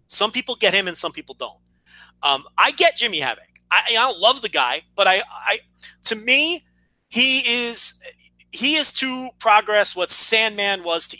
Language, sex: English, male